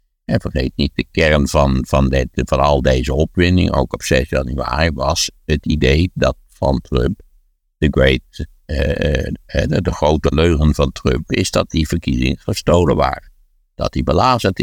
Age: 60-79